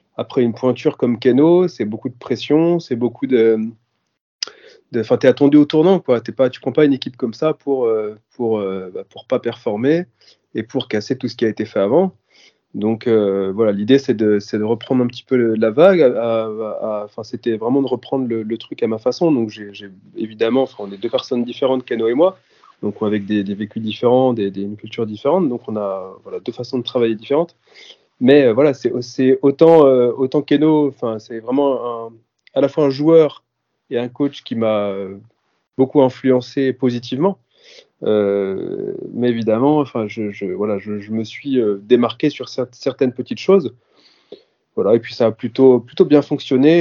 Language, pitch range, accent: French, 110-135 Hz, French